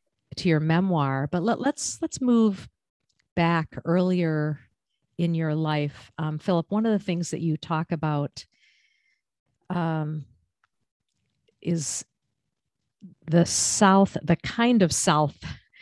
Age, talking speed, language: 50-69, 120 wpm, English